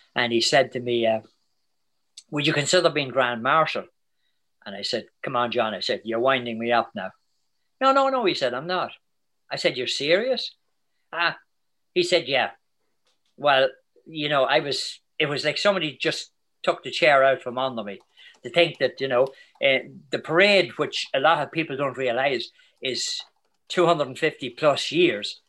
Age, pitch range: 50-69, 130-170 Hz